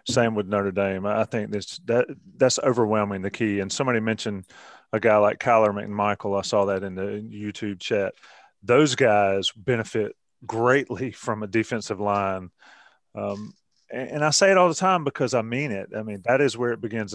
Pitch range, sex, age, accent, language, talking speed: 100-125 Hz, male, 30-49, American, English, 190 wpm